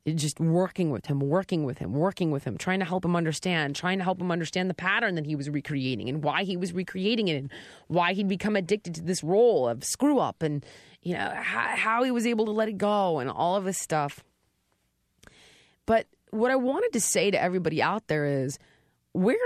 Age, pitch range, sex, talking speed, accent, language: 30-49, 145-220 Hz, female, 215 wpm, American, English